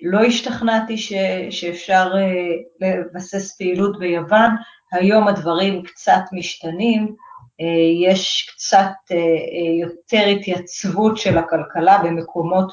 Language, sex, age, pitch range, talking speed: Hebrew, female, 30-49, 170-200 Hz, 100 wpm